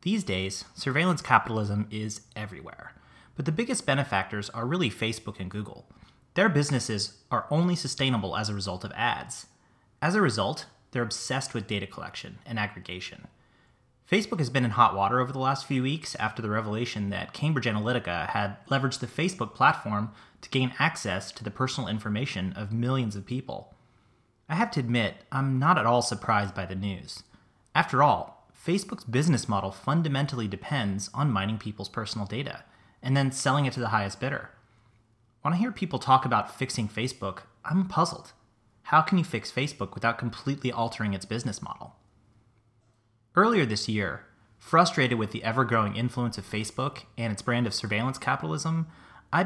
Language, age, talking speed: English, 30-49, 165 wpm